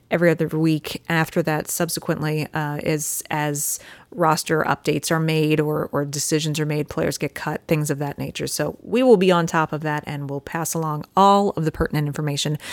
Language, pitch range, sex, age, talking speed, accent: English, 155-190 Hz, female, 30-49, 200 wpm, American